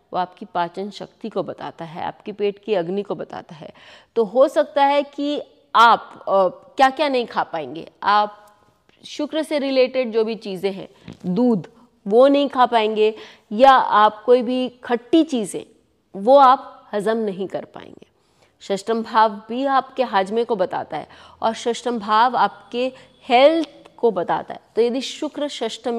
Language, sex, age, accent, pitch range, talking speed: English, female, 30-49, Indian, 195-265 Hz, 135 wpm